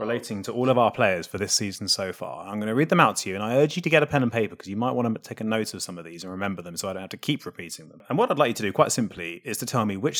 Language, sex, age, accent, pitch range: English, male, 30-49, British, 95-140 Hz